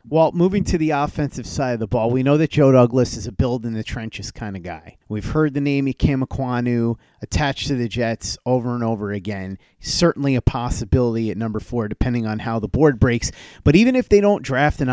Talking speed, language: 210 wpm, English